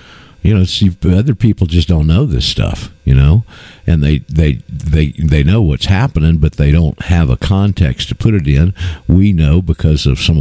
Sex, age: male, 50-69